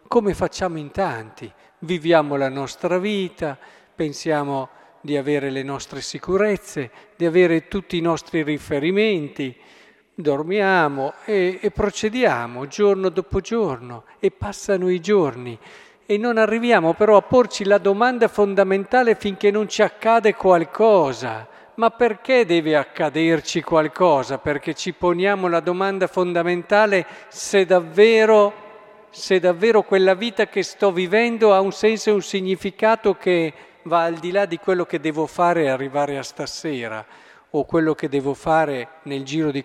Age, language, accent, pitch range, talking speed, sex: 50-69, Italian, native, 160-210 Hz, 140 wpm, male